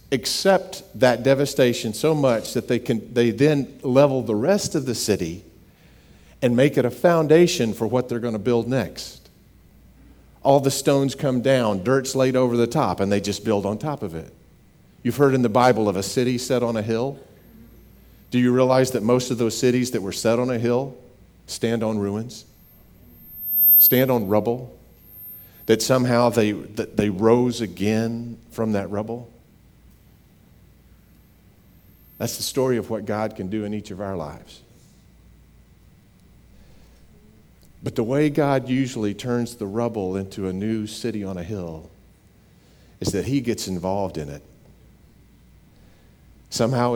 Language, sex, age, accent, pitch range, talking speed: English, male, 50-69, American, 95-125 Hz, 160 wpm